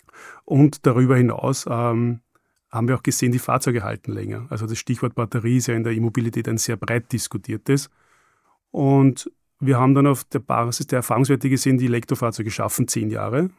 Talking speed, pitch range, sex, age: 175 wpm, 115-130 Hz, male, 30-49